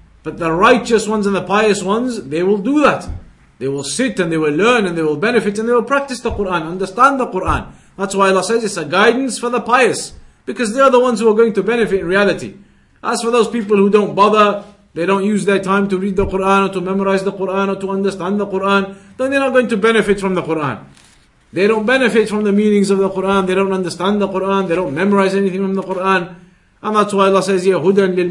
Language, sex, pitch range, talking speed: English, male, 185-225 Hz, 245 wpm